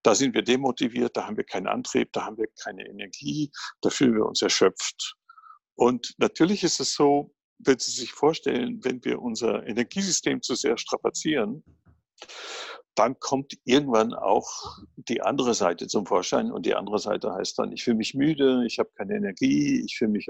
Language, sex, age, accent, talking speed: German, male, 60-79, German, 180 wpm